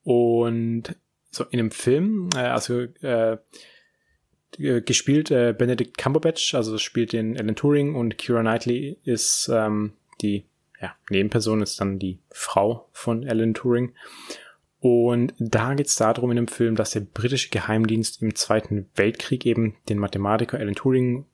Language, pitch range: German, 110-125 Hz